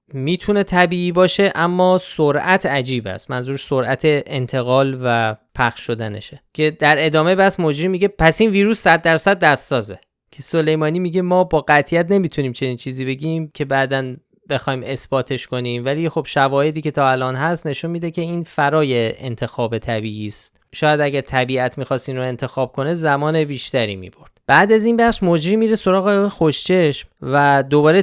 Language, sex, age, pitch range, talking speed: Persian, male, 20-39, 130-165 Hz, 165 wpm